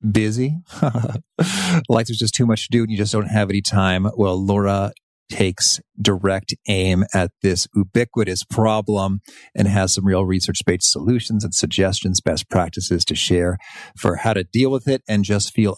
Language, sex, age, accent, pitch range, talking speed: English, male, 40-59, American, 95-120 Hz, 170 wpm